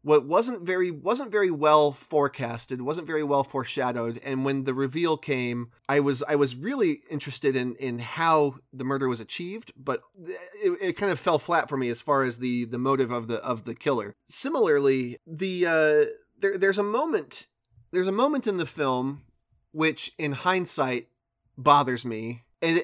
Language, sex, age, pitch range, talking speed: English, male, 30-49, 130-175 Hz, 180 wpm